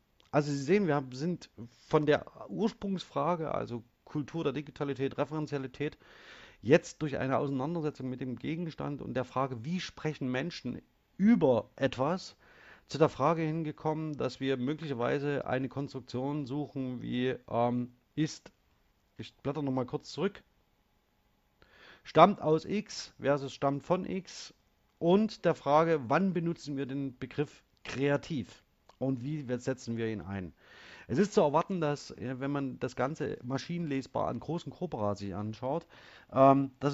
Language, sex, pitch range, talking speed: German, male, 125-160 Hz, 140 wpm